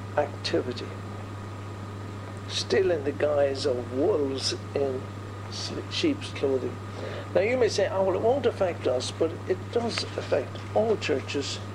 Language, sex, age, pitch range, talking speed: English, male, 60-79, 100-140 Hz, 135 wpm